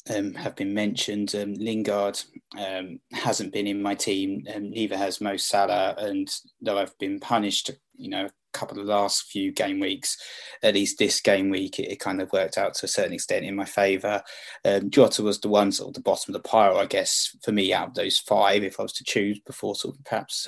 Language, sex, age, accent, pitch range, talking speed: English, male, 20-39, British, 100-105 Hz, 230 wpm